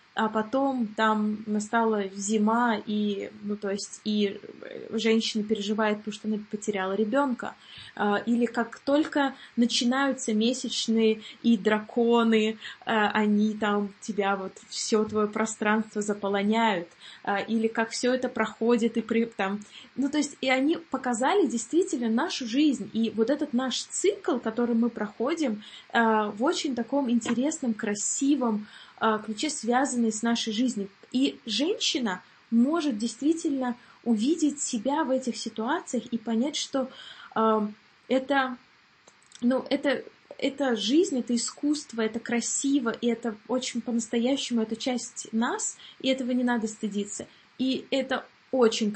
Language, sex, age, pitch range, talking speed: Russian, female, 20-39, 215-260 Hz, 125 wpm